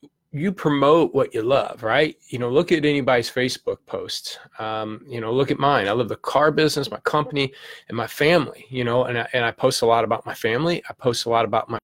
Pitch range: 115-150 Hz